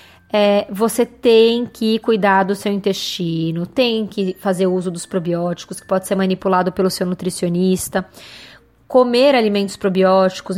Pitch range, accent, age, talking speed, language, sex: 185-225 Hz, Brazilian, 20-39, 135 wpm, Portuguese, female